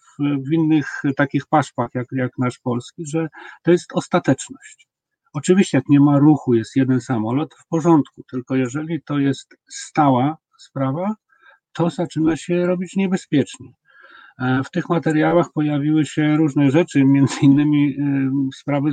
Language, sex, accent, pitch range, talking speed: Polish, male, native, 130-160 Hz, 135 wpm